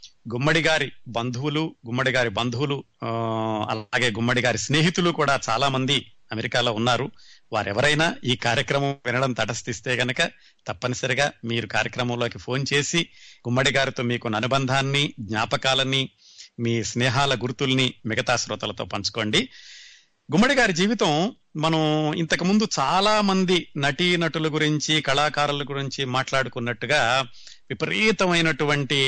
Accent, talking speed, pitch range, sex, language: native, 105 wpm, 120-155 Hz, male, Telugu